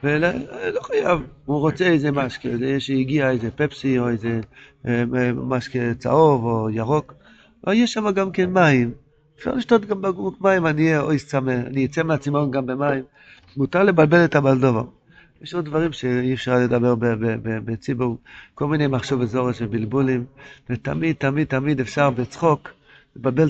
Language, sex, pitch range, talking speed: Hebrew, male, 130-160 Hz, 155 wpm